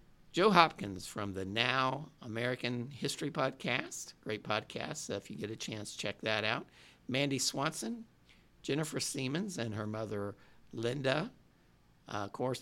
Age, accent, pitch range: 60-79, American, 110-145 Hz